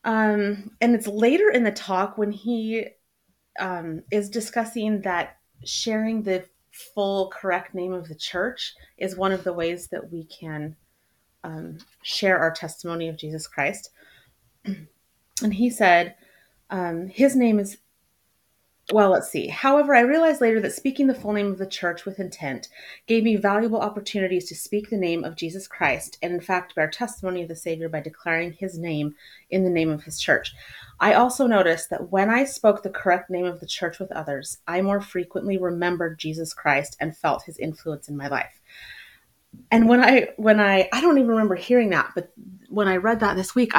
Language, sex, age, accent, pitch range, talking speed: English, female, 30-49, American, 165-215 Hz, 185 wpm